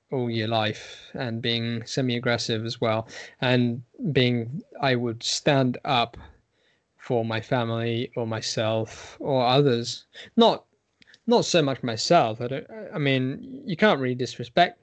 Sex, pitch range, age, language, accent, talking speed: male, 115-145 Hz, 10-29, English, British, 140 wpm